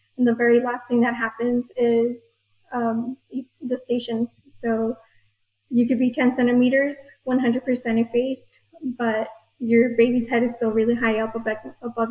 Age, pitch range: 20-39, 230-255 Hz